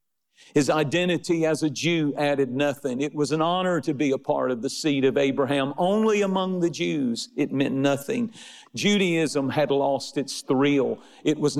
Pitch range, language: 130-165 Hz, English